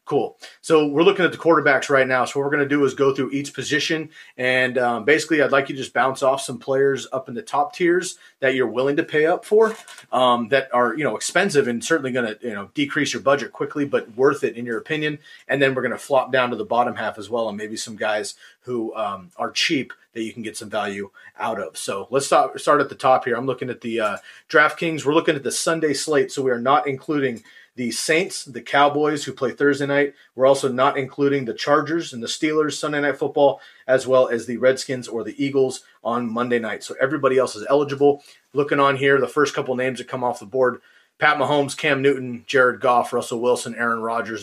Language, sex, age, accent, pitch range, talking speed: English, male, 30-49, American, 120-150 Hz, 240 wpm